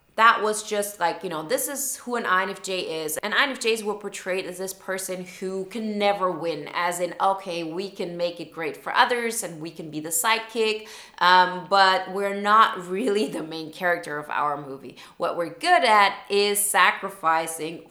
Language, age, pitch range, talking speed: English, 20-39, 170-220 Hz, 190 wpm